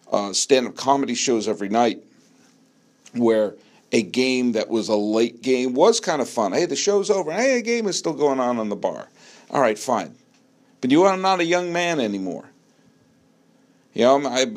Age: 50-69